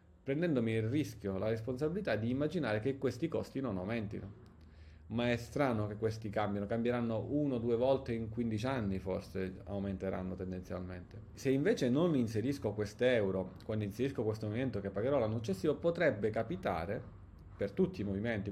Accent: native